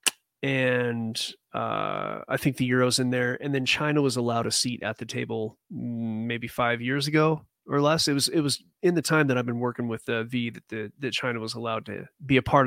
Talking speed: 225 wpm